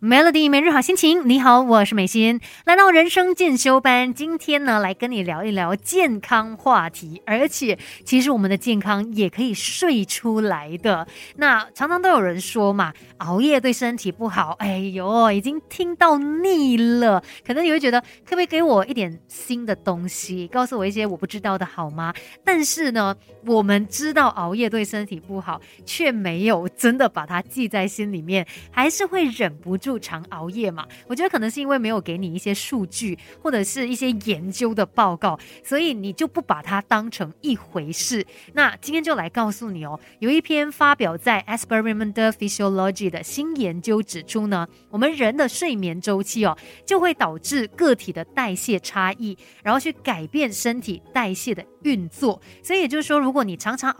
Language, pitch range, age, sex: Chinese, 195-280 Hz, 30-49, female